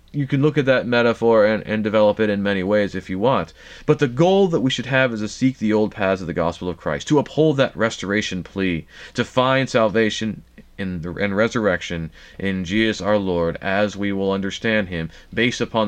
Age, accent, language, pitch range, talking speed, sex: 30-49, American, English, 90-110 Hz, 215 wpm, male